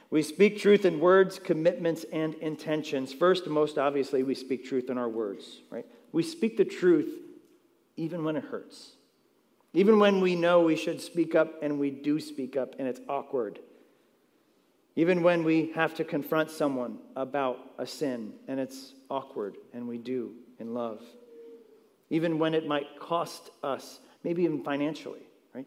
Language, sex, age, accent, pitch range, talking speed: English, male, 40-59, American, 135-165 Hz, 165 wpm